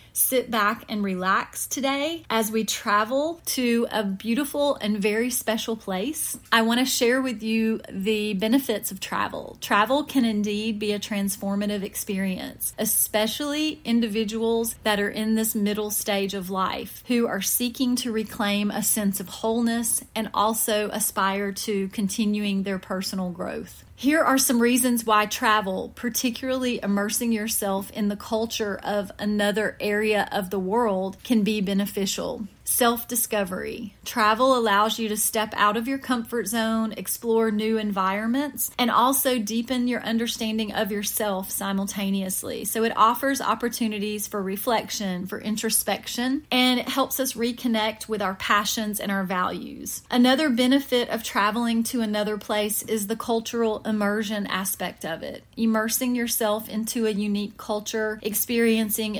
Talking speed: 145 wpm